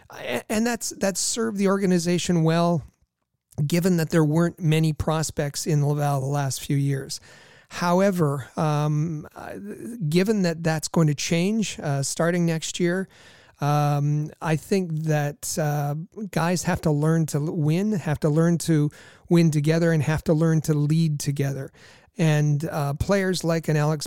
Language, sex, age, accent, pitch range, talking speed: English, male, 40-59, American, 150-170 Hz, 150 wpm